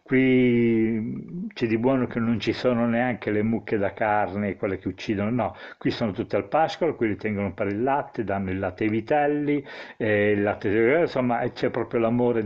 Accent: native